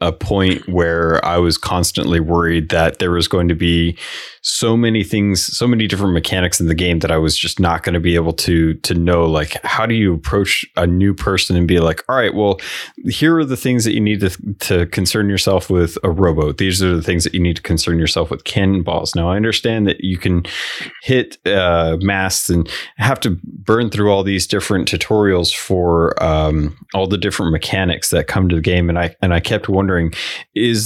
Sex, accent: male, American